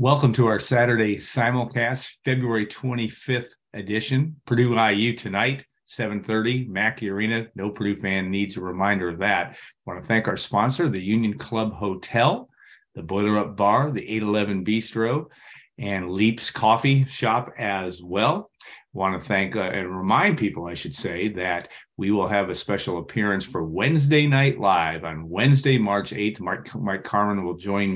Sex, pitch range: male, 90-110 Hz